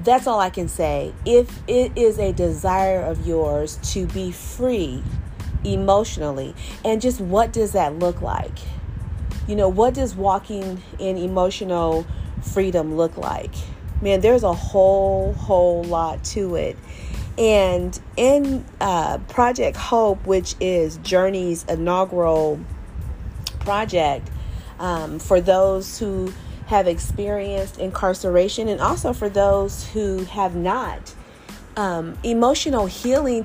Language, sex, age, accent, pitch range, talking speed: English, female, 40-59, American, 170-230 Hz, 120 wpm